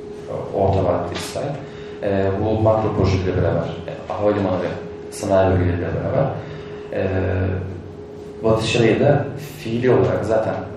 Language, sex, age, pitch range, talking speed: Turkish, male, 30-49, 95-125 Hz, 115 wpm